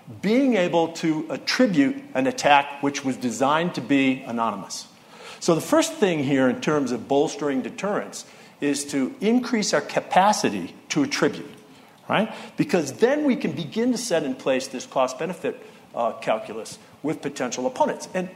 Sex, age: male, 50-69